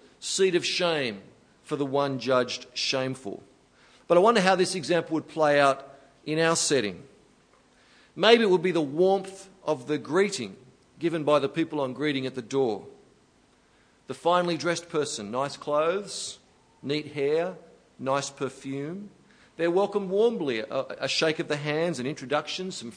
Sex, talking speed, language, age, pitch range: male, 155 wpm, English, 50-69, 135-175 Hz